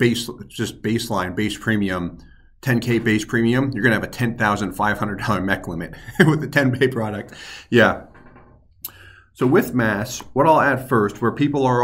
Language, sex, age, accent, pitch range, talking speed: English, male, 40-59, American, 100-135 Hz, 150 wpm